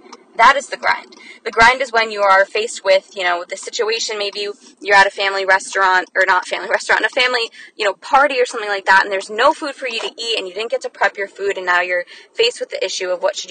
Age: 20-39